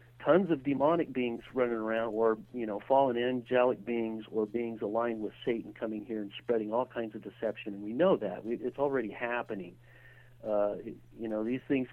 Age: 40-59